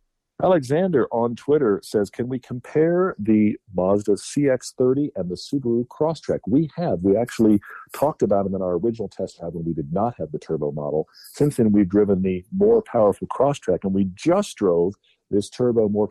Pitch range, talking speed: 90-120 Hz, 185 wpm